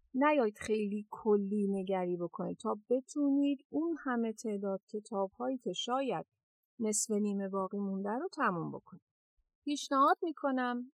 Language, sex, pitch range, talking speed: Persian, female, 210-275 Hz, 125 wpm